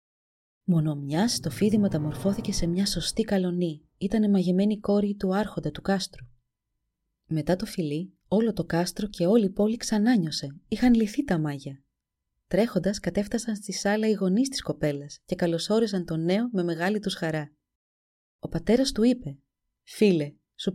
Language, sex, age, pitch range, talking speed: Greek, female, 30-49, 155-215 Hz, 150 wpm